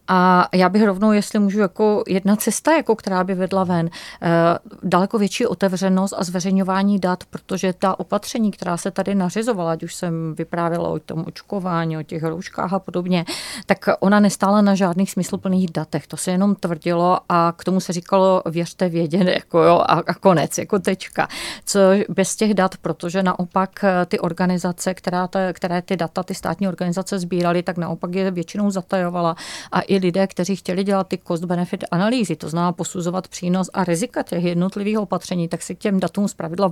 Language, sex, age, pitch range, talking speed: Czech, female, 40-59, 175-195 Hz, 180 wpm